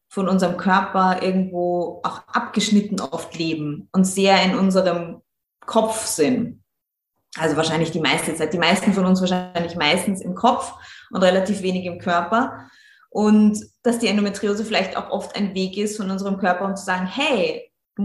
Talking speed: 165 wpm